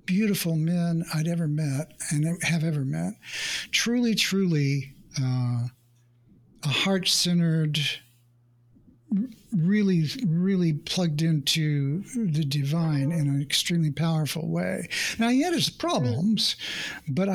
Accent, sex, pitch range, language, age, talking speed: American, male, 145-185 Hz, English, 60-79, 105 wpm